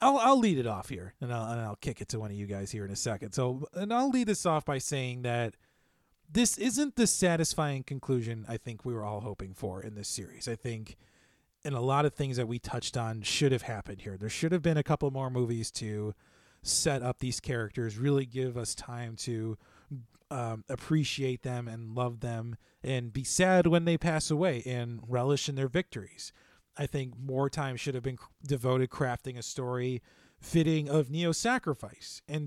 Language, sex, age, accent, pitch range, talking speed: English, male, 30-49, American, 115-150 Hz, 205 wpm